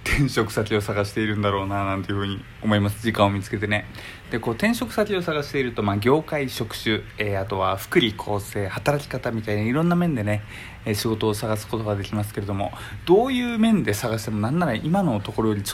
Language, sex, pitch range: Japanese, male, 100-130 Hz